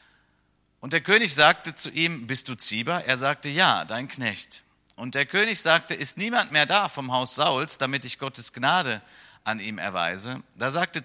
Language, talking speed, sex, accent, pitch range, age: German, 185 wpm, male, German, 115-165 Hz, 50-69